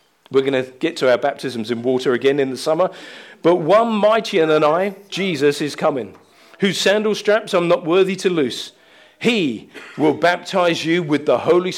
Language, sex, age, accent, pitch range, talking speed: English, male, 40-59, British, 165-210 Hz, 185 wpm